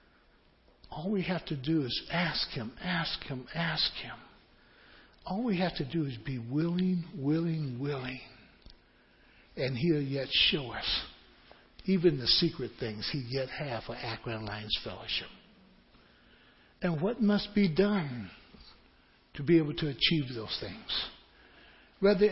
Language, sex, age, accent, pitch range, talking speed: English, male, 60-79, American, 130-175 Hz, 135 wpm